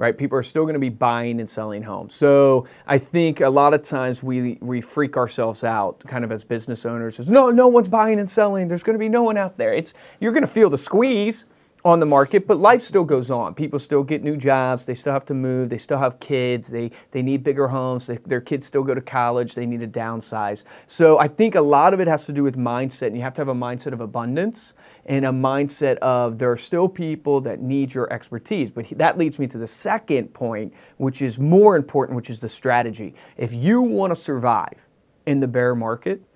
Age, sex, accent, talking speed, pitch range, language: 30-49, male, American, 235 wpm, 120-155 Hz, English